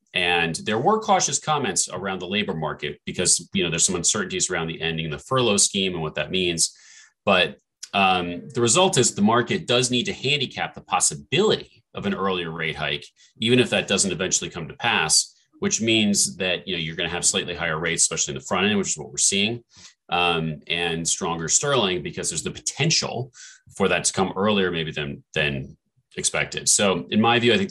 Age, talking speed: 30-49, 210 wpm